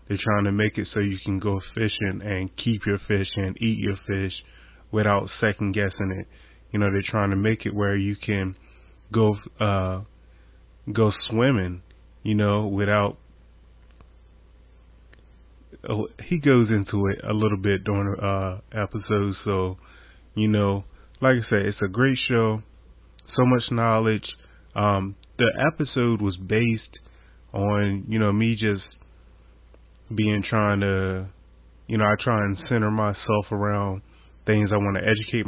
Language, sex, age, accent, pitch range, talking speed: English, male, 20-39, American, 95-110 Hz, 150 wpm